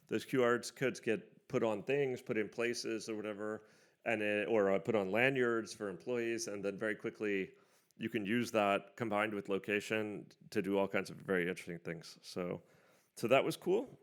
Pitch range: 105-125 Hz